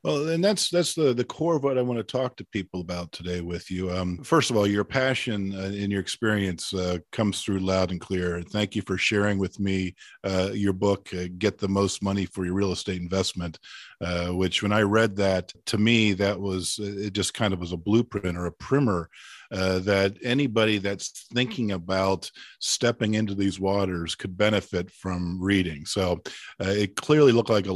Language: English